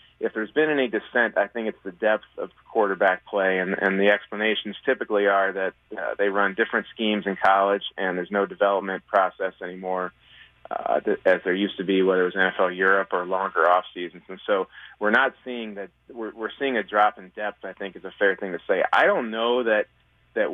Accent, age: American, 30-49